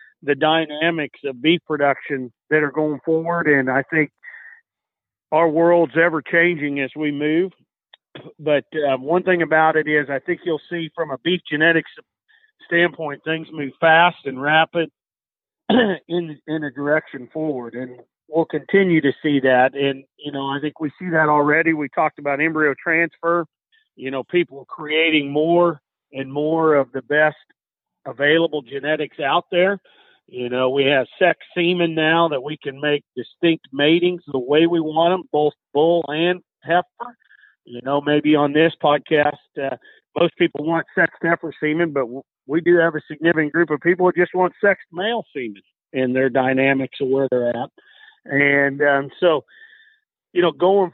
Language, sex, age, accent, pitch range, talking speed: English, male, 50-69, American, 145-175 Hz, 165 wpm